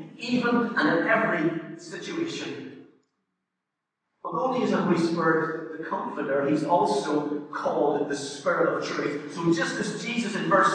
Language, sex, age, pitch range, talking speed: English, male, 40-59, 165-210 Hz, 145 wpm